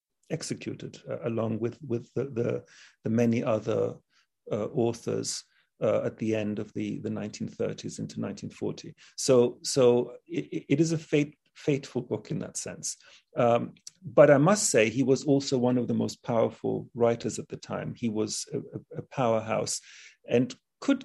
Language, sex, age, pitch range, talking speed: English, male, 40-59, 120-150 Hz, 160 wpm